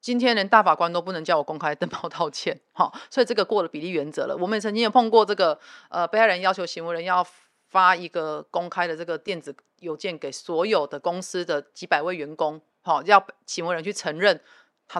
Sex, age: female, 30-49